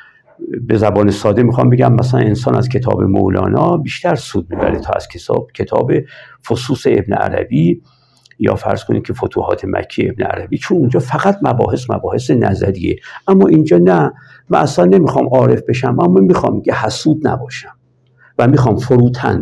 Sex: male